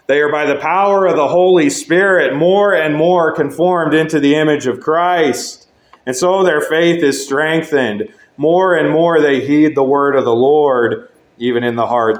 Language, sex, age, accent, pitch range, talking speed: English, male, 40-59, American, 130-170 Hz, 185 wpm